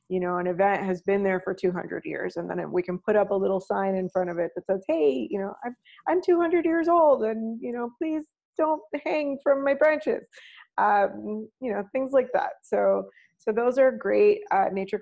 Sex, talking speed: female, 220 wpm